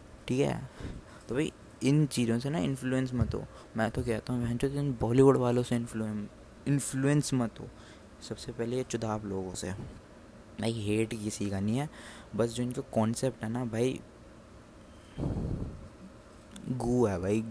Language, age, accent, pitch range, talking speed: Hindi, 20-39, native, 105-125 Hz, 145 wpm